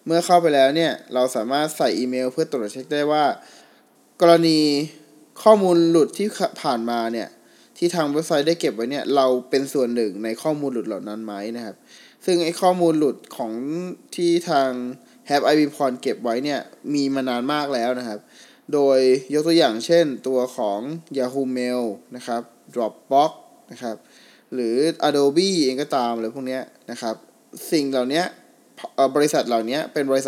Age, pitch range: 20-39, 125-150 Hz